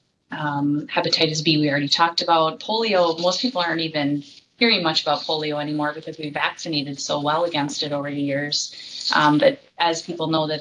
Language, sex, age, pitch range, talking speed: English, female, 20-39, 145-170 Hz, 185 wpm